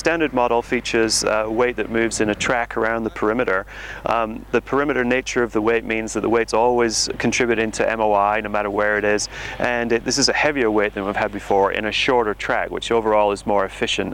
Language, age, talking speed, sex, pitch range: English, 30-49, 230 wpm, male, 105-120 Hz